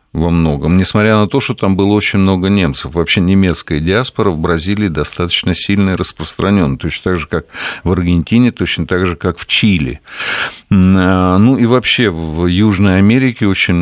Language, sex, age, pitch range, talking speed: Russian, male, 50-69, 90-110 Hz, 165 wpm